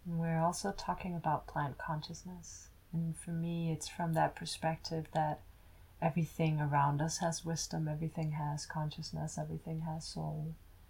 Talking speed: 140 wpm